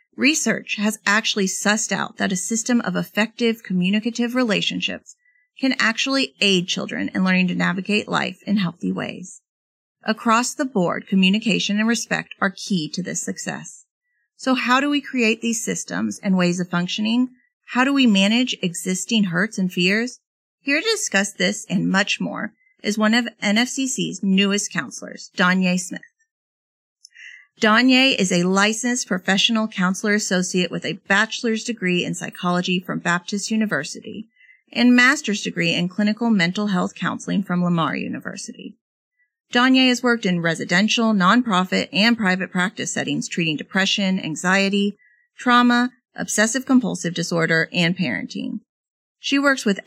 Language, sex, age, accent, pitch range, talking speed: English, female, 40-59, American, 185-240 Hz, 140 wpm